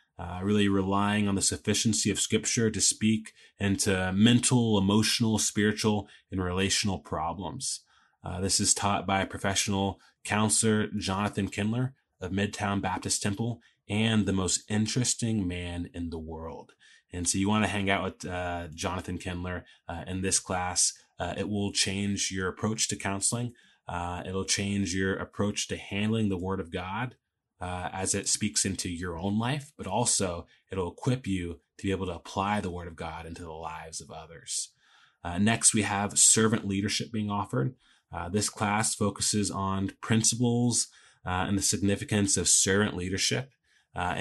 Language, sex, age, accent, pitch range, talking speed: English, male, 20-39, American, 95-110 Hz, 165 wpm